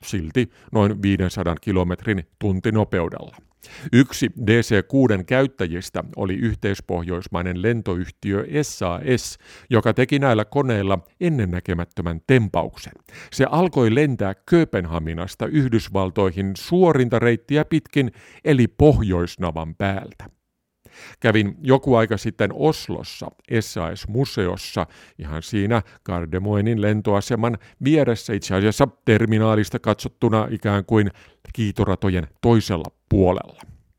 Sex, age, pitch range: male, 50-69, 95-120 Hz